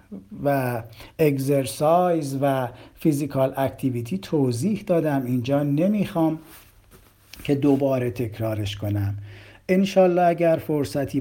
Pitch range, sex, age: 130-175 Hz, male, 50-69